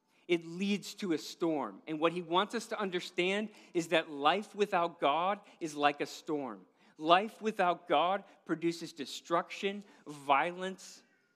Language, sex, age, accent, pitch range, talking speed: English, male, 40-59, American, 160-205 Hz, 145 wpm